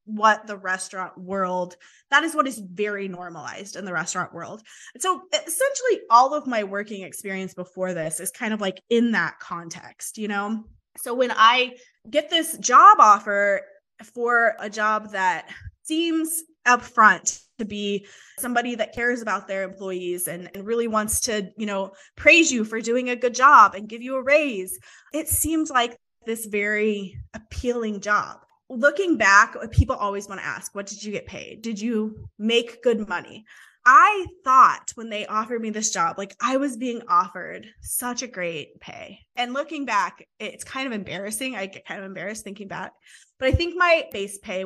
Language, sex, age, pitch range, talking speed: English, female, 20-39, 200-260 Hz, 180 wpm